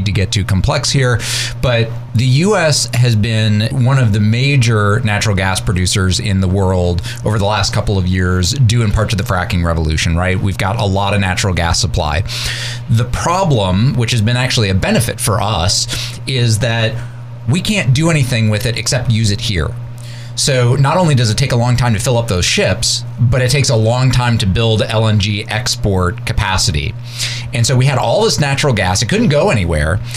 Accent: American